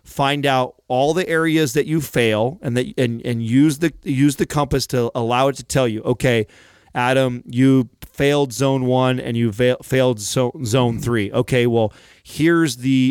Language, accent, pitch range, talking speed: English, American, 120-140 Hz, 185 wpm